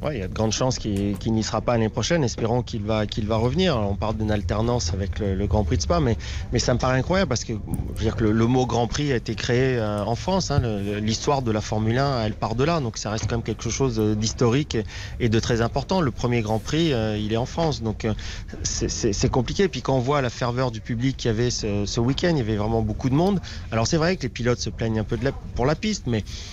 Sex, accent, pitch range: male, French, 105-130 Hz